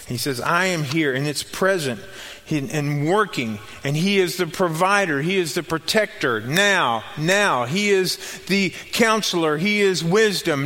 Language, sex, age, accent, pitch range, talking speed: English, male, 40-59, American, 145-200 Hz, 160 wpm